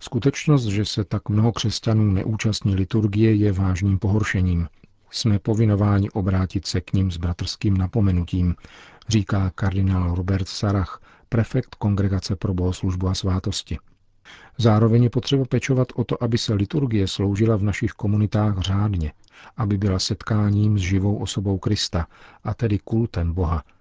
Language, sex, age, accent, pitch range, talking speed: Czech, male, 40-59, native, 95-110 Hz, 140 wpm